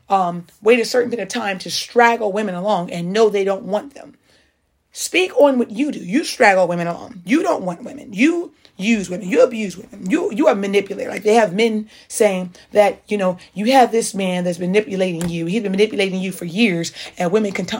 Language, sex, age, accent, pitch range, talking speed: English, female, 30-49, American, 195-255 Hz, 210 wpm